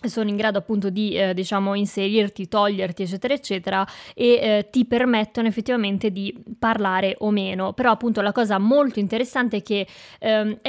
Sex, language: female, Italian